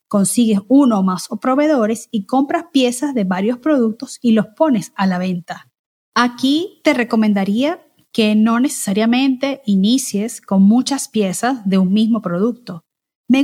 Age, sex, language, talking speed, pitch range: 30-49, female, Spanish, 145 wpm, 200-260 Hz